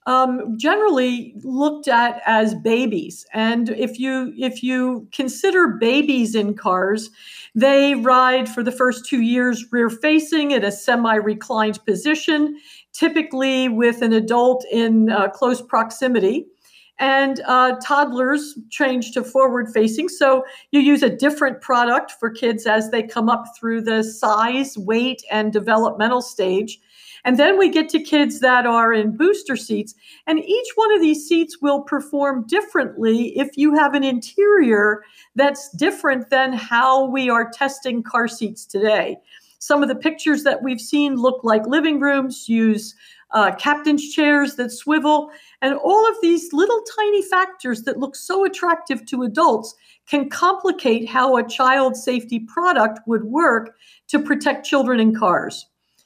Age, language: 50-69, English